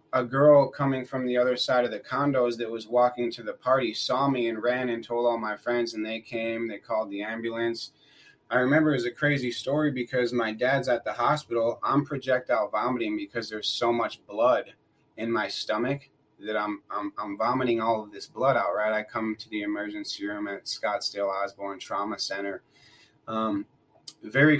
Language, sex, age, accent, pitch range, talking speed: English, male, 30-49, American, 110-125 Hz, 195 wpm